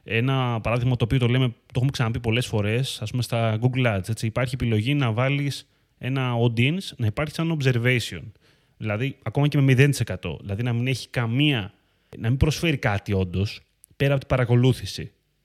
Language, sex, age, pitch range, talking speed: Greek, male, 30-49, 110-140 Hz, 180 wpm